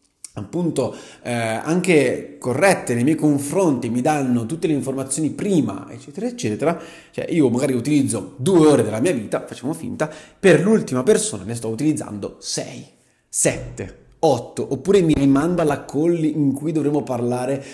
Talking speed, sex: 150 wpm, male